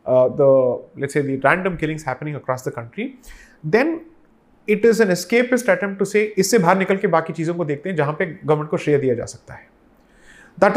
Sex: male